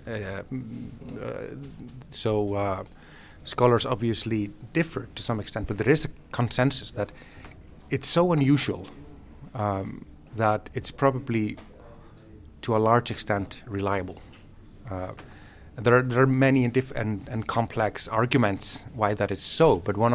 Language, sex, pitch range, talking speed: Swedish, male, 100-125 Hz, 130 wpm